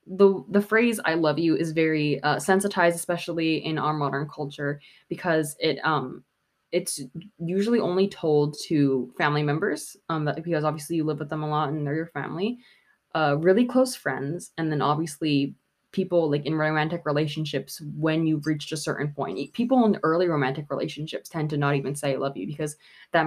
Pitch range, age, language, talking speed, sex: 145-175 Hz, 20-39, English, 185 wpm, female